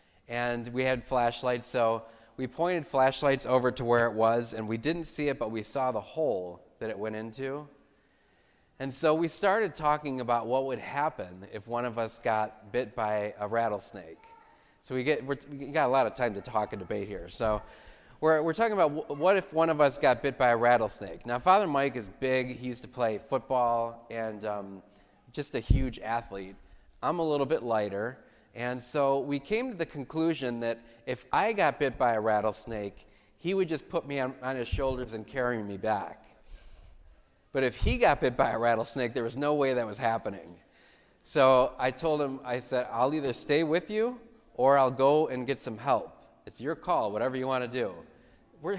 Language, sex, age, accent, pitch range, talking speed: English, male, 30-49, American, 110-140 Hz, 205 wpm